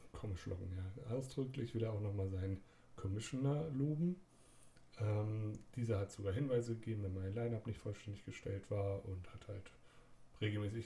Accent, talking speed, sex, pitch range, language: German, 155 wpm, male, 100-120 Hz, German